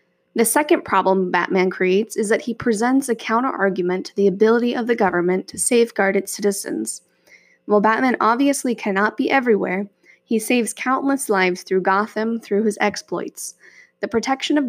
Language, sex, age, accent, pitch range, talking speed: English, female, 10-29, American, 195-235 Hz, 160 wpm